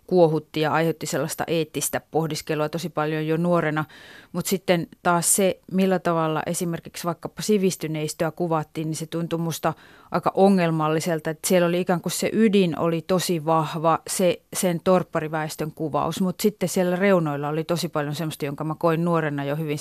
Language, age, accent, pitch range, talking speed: Finnish, 30-49, native, 155-180 Hz, 160 wpm